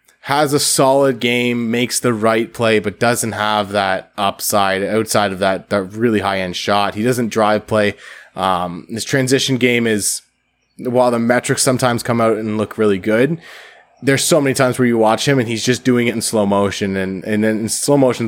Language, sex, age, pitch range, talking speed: English, male, 20-39, 105-125 Hz, 200 wpm